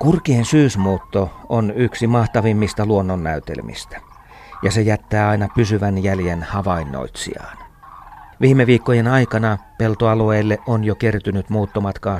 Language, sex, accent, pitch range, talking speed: Finnish, male, native, 100-120 Hz, 105 wpm